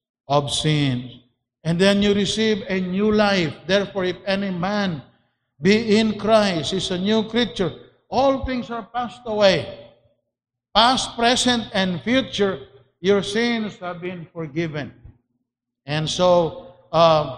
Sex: male